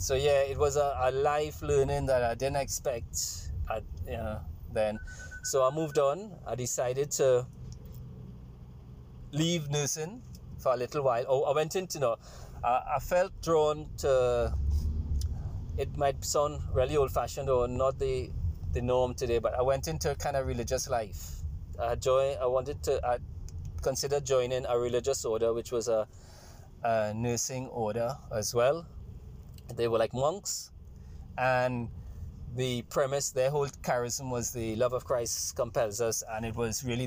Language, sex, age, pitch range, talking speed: English, male, 30-49, 105-130 Hz, 150 wpm